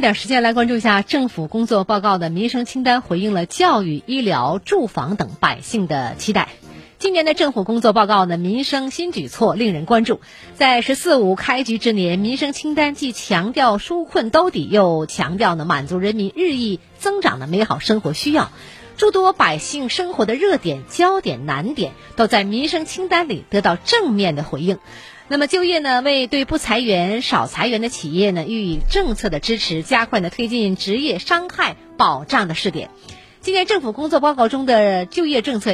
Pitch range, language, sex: 195-300 Hz, Chinese, female